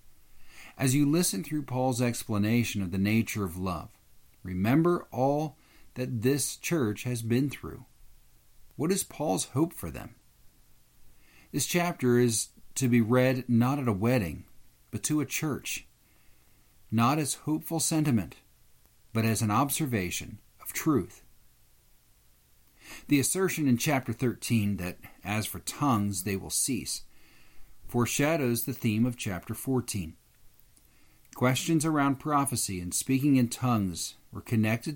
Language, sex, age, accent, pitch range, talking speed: English, male, 50-69, American, 105-140 Hz, 130 wpm